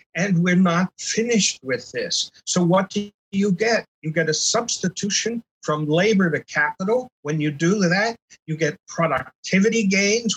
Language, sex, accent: English, male, American